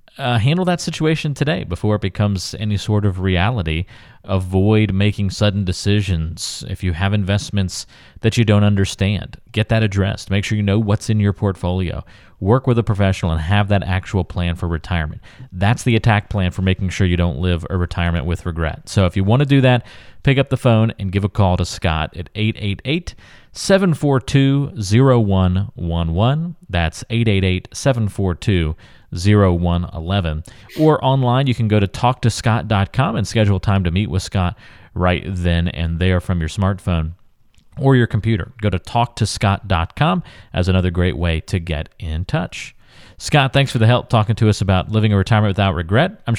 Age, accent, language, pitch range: 30-49, American, English, 95-120 Hz